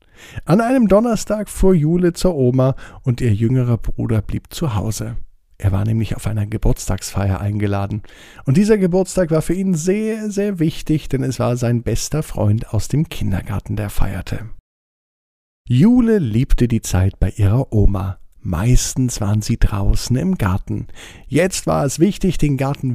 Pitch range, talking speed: 105-150 Hz, 155 wpm